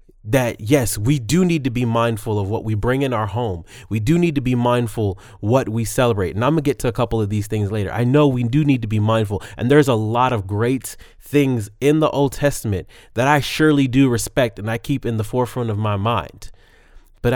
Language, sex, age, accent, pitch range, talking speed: English, male, 30-49, American, 110-140 Hz, 240 wpm